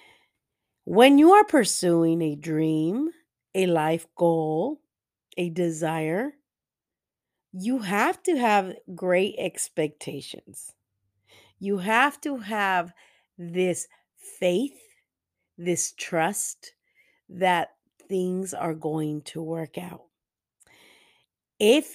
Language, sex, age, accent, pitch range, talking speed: English, female, 40-59, American, 165-220 Hz, 90 wpm